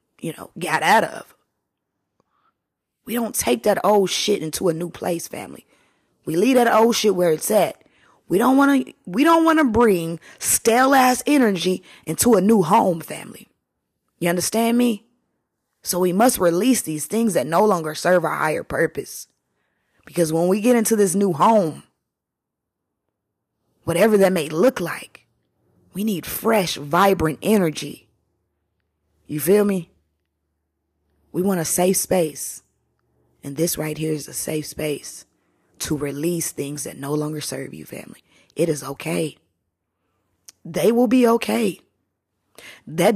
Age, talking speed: 20-39, 145 wpm